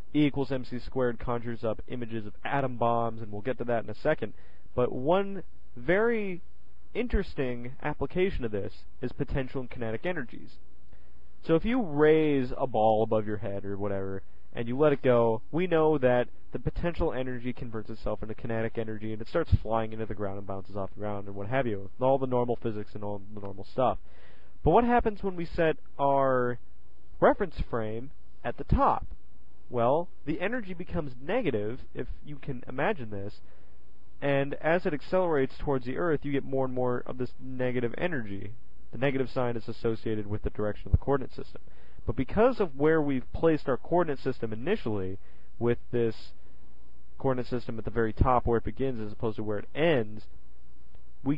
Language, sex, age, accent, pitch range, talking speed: English, male, 30-49, American, 105-140 Hz, 185 wpm